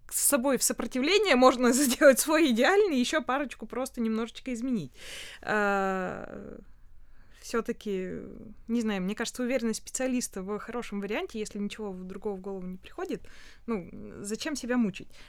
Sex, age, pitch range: female, 20-39, 200-250 Hz